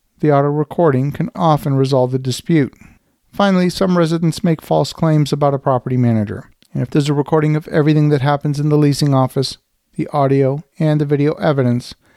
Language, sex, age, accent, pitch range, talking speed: English, male, 50-69, American, 130-160 Hz, 180 wpm